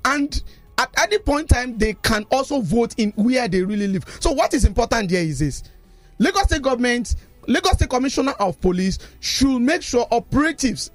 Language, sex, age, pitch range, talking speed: English, male, 40-59, 200-280 Hz, 185 wpm